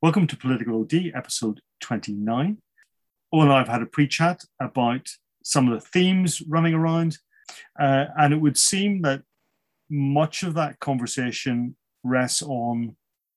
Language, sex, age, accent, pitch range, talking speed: English, male, 30-49, British, 125-150 Hz, 145 wpm